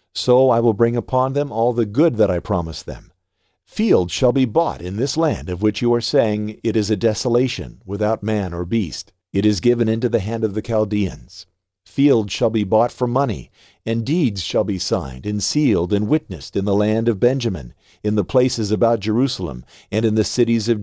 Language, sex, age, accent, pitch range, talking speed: English, male, 50-69, American, 95-125 Hz, 205 wpm